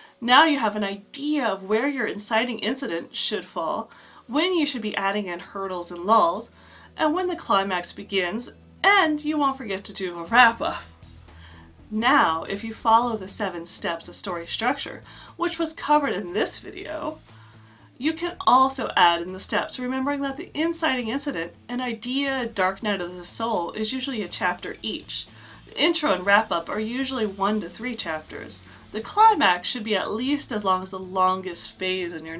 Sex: female